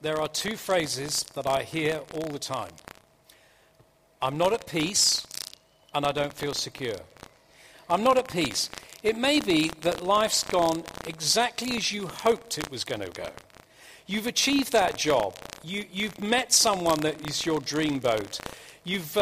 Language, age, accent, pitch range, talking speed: English, 50-69, British, 145-225 Hz, 160 wpm